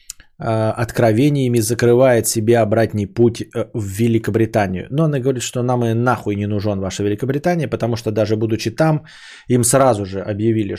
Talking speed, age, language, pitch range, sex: 150 wpm, 20-39, Bulgarian, 110-150 Hz, male